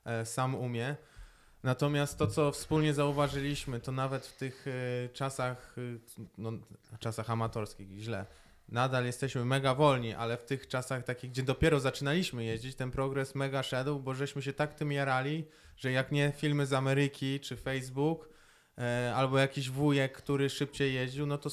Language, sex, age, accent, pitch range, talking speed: Polish, male, 20-39, native, 115-135 Hz, 155 wpm